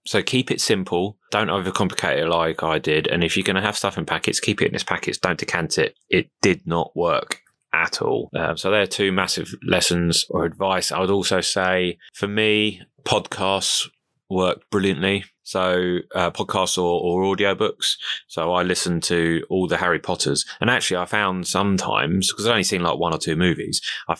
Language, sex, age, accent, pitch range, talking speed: English, male, 20-39, British, 85-100 Hz, 205 wpm